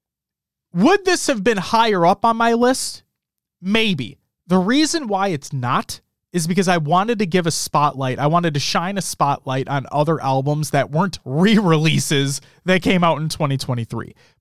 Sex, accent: male, American